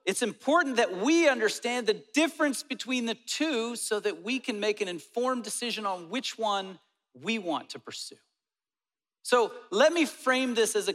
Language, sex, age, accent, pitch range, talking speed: English, male, 40-59, American, 200-265 Hz, 175 wpm